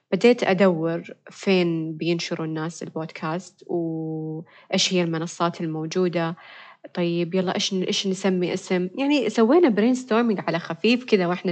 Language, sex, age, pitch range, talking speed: Arabic, female, 20-39, 170-220 Hz, 120 wpm